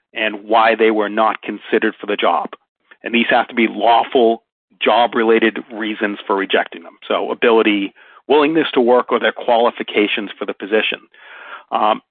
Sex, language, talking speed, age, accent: male, English, 160 wpm, 40-59, American